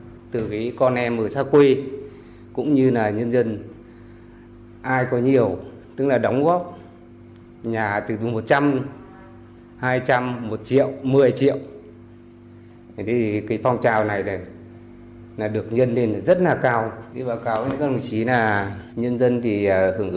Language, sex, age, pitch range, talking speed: Vietnamese, male, 20-39, 100-120 Hz, 160 wpm